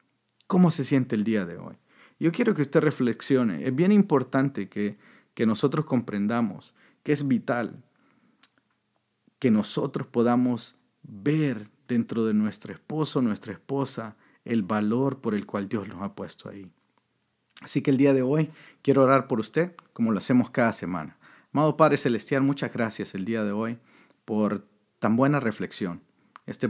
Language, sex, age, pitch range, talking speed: Spanish, male, 50-69, 110-140 Hz, 160 wpm